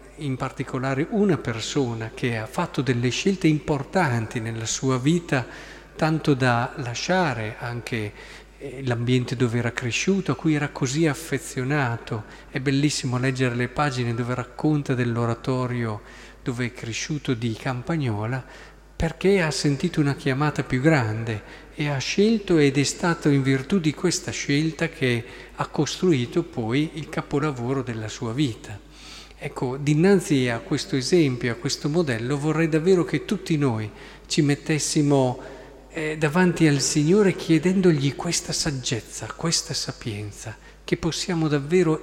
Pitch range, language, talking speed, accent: 125-160 Hz, Italian, 135 wpm, native